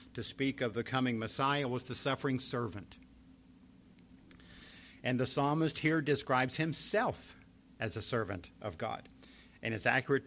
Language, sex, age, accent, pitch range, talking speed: English, male, 50-69, American, 115-150 Hz, 140 wpm